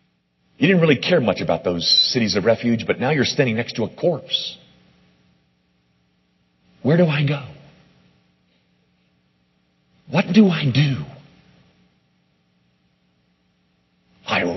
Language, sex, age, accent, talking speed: English, male, 40-59, American, 110 wpm